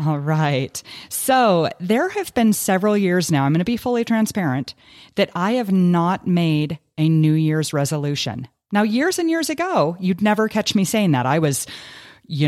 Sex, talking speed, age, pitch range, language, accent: female, 185 wpm, 30-49, 140-190 Hz, English, American